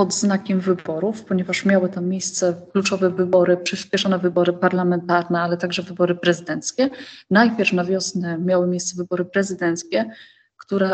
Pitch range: 175-205 Hz